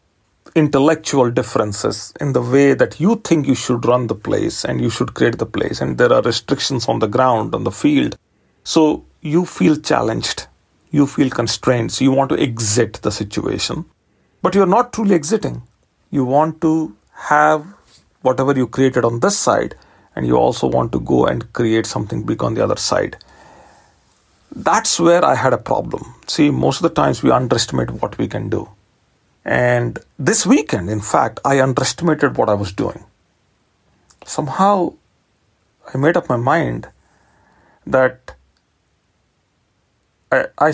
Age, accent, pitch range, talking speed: 40-59, Indian, 120-170 Hz, 160 wpm